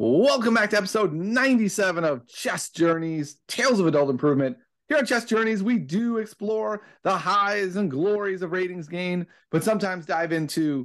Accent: American